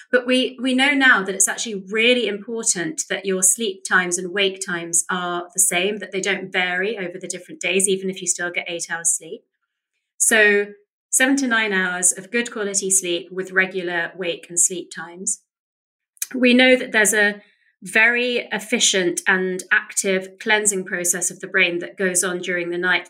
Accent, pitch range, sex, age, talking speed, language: British, 180-215 Hz, female, 30-49, 185 wpm, English